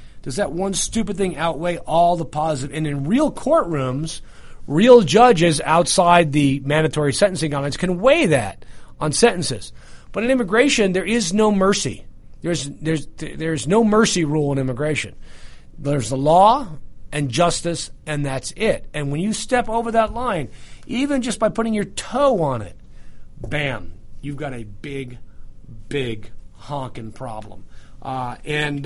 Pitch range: 135-215 Hz